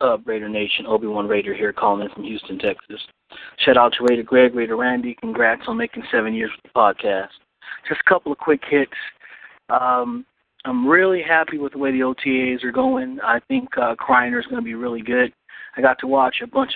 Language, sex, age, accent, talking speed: English, male, 30-49, American, 210 wpm